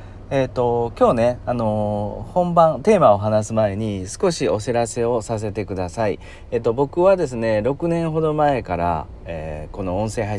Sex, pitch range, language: male, 90-120 Hz, Japanese